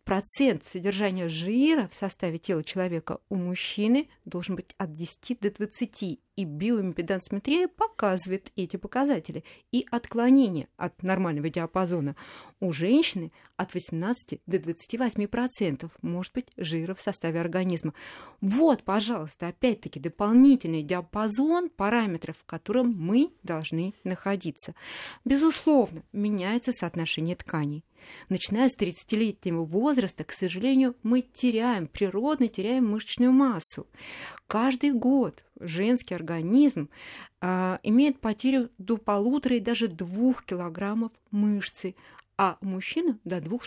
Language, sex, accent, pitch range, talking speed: Russian, female, native, 180-245 Hz, 115 wpm